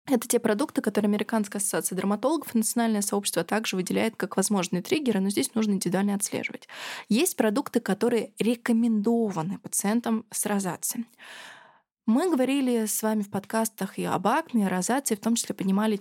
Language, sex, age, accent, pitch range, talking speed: Russian, female, 20-39, native, 195-240 Hz, 155 wpm